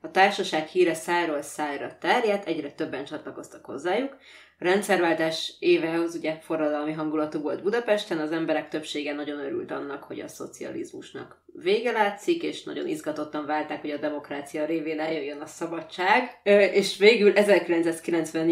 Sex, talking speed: female, 135 wpm